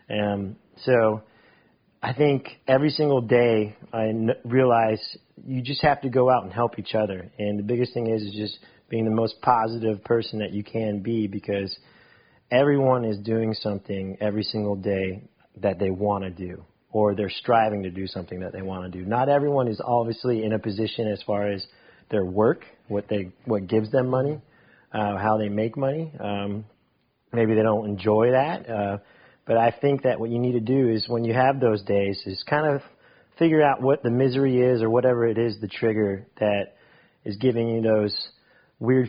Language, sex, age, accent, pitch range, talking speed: English, male, 30-49, American, 100-120 Hz, 195 wpm